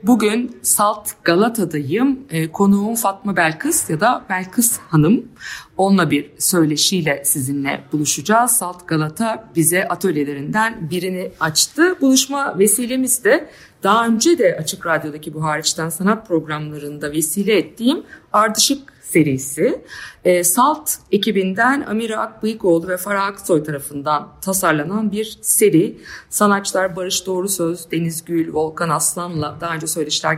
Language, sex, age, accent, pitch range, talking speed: Turkish, female, 50-69, native, 165-215 Hz, 120 wpm